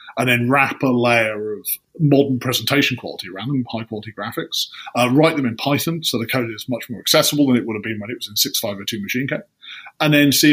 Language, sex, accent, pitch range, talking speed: English, male, British, 115-140 Hz, 250 wpm